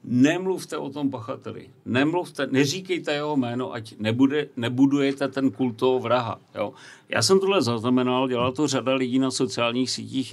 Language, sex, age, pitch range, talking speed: Czech, male, 50-69, 120-140 Hz, 145 wpm